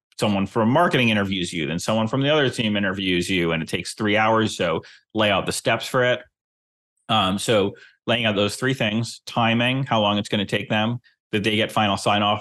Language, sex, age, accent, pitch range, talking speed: English, male, 30-49, American, 100-120 Hz, 220 wpm